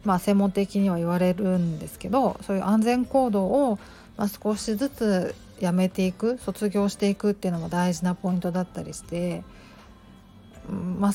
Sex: female